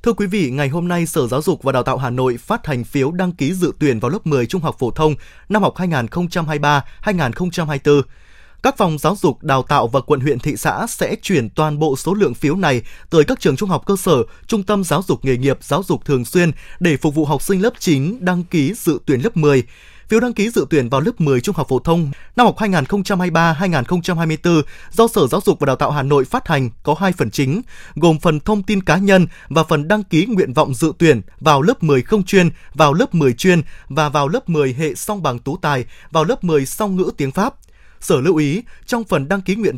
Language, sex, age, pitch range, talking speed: Vietnamese, male, 20-39, 140-190 Hz, 235 wpm